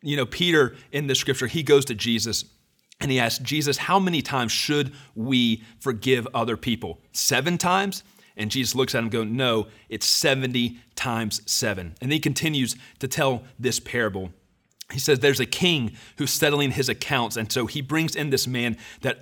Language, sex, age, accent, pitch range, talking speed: English, male, 30-49, American, 115-145 Hz, 185 wpm